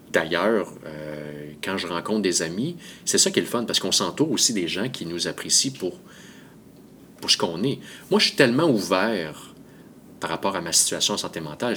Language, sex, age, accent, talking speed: French, male, 30-49, Canadian, 205 wpm